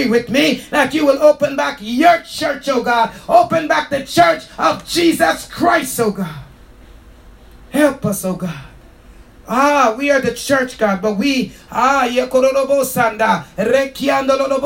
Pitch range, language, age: 225-280 Hz, English, 30-49